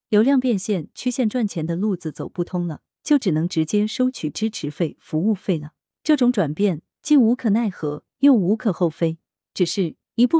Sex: female